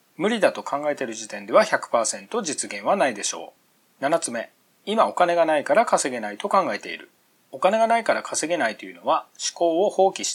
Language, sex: Japanese, male